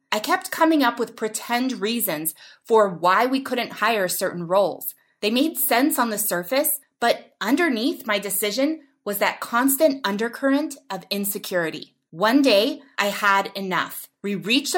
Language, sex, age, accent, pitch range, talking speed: English, female, 20-39, American, 205-285 Hz, 150 wpm